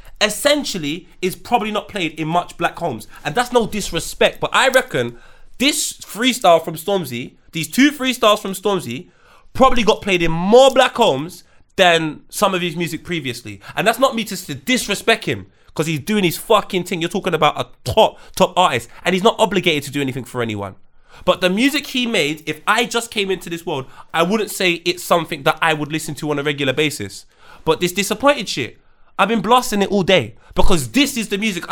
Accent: British